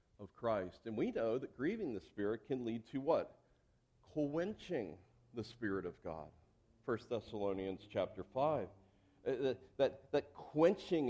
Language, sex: English, male